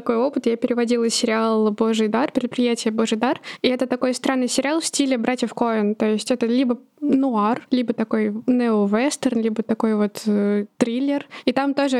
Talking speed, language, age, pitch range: 175 wpm, Russian, 20-39, 225-255 Hz